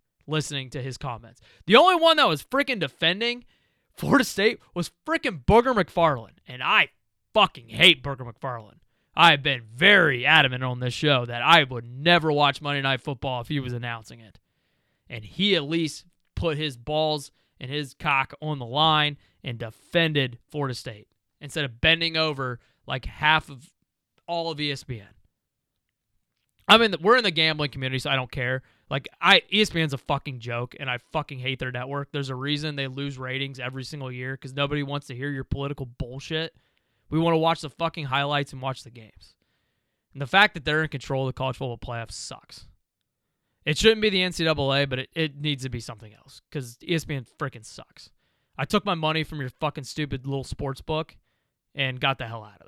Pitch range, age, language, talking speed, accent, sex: 125-160 Hz, 20-39, English, 190 wpm, American, male